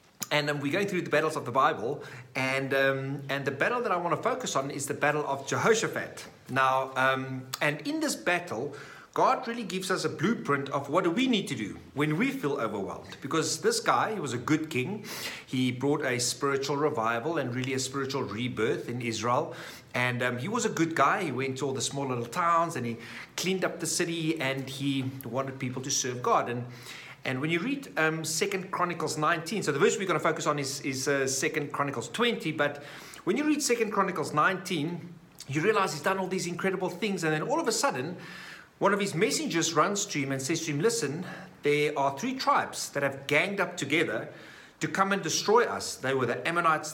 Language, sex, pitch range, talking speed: English, male, 135-180 Hz, 215 wpm